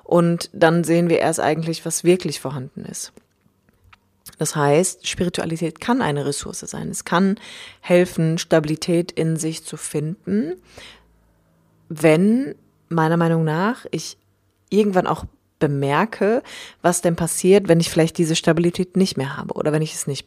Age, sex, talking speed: 20-39, female, 145 wpm